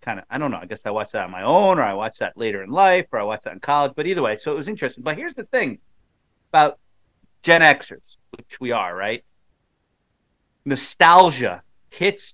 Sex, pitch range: male, 115-150 Hz